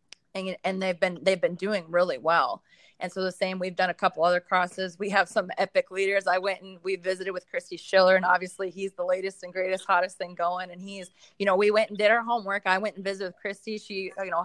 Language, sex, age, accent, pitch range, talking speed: English, female, 20-39, American, 175-200 Hz, 255 wpm